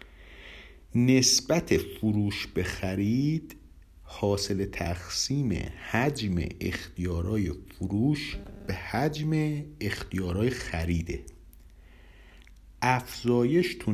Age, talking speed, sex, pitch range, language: 50-69, 60 wpm, male, 85-120 Hz, Persian